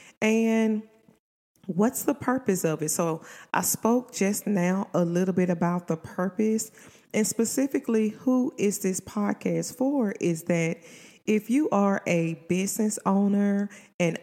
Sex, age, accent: female, 30-49, American